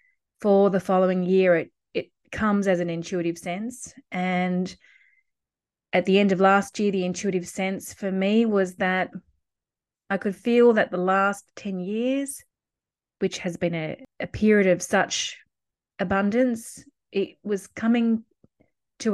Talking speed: 145 wpm